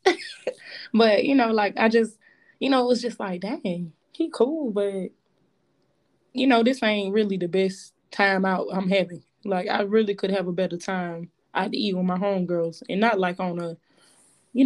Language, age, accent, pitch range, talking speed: English, 20-39, American, 190-240 Hz, 190 wpm